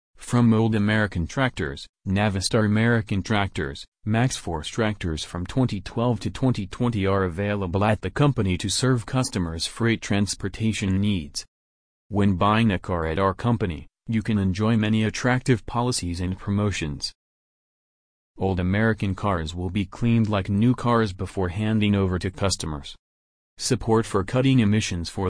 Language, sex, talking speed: English, male, 140 wpm